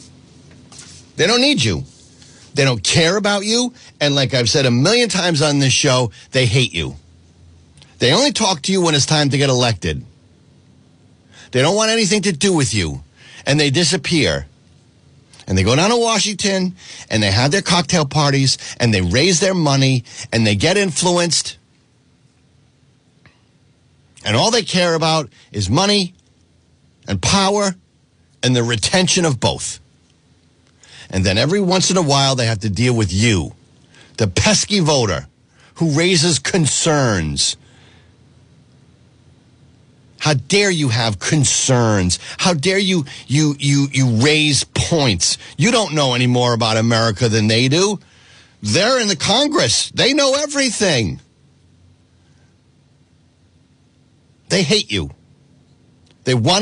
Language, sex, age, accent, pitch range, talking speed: English, male, 50-69, American, 120-180 Hz, 140 wpm